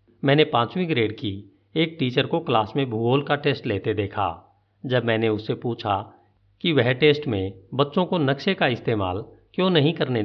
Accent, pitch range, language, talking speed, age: native, 100-145 Hz, Hindi, 175 wpm, 50-69